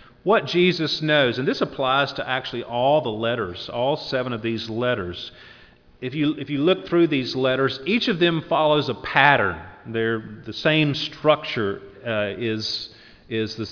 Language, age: English, 40-59